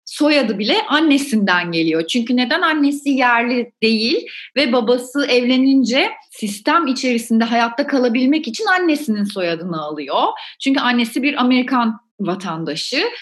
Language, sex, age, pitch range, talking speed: Turkish, female, 30-49, 220-285 Hz, 115 wpm